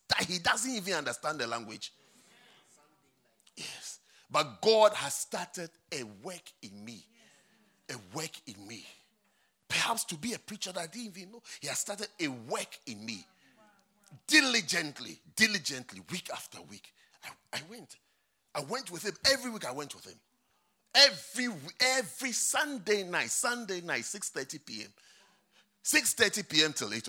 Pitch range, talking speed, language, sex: 180-240 Hz, 150 wpm, English, male